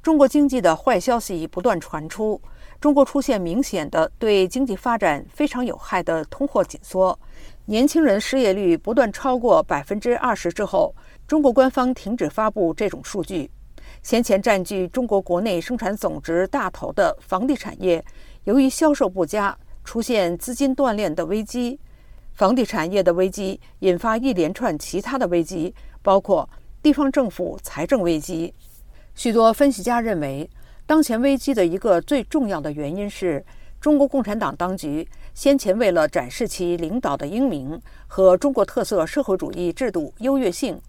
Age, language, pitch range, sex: 50-69, Chinese, 180-270 Hz, female